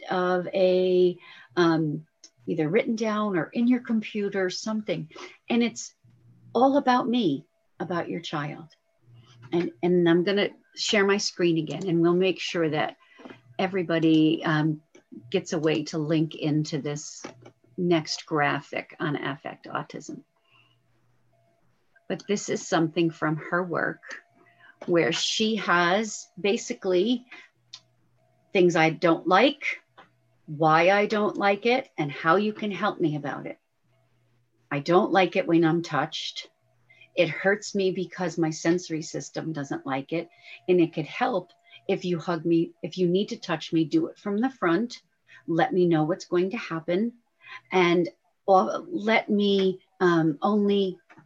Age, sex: 50-69, female